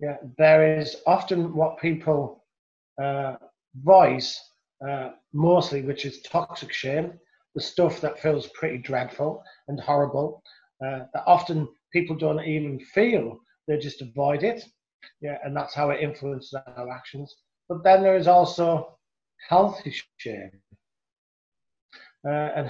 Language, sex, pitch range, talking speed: English, male, 145-170 Hz, 130 wpm